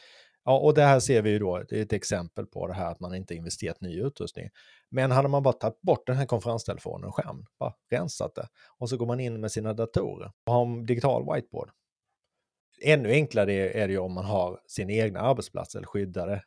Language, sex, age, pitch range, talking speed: Swedish, male, 30-49, 100-120 Hz, 220 wpm